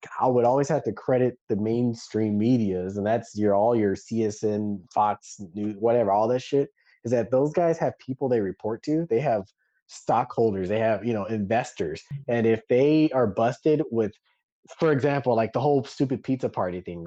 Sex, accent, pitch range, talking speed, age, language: male, American, 105-135 Hz, 185 wpm, 20-39, English